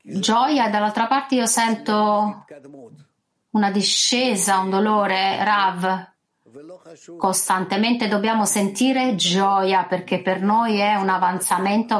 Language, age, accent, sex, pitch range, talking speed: Italian, 30-49, native, female, 180-215 Hz, 105 wpm